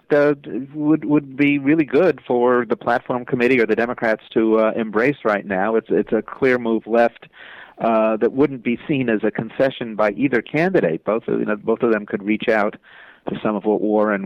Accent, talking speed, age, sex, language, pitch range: American, 210 wpm, 50-69, male, English, 105-135 Hz